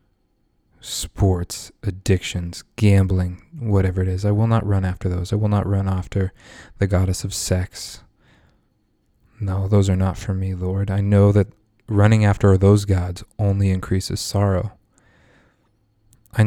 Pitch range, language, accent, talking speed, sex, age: 95-105 Hz, English, American, 140 wpm, male, 20-39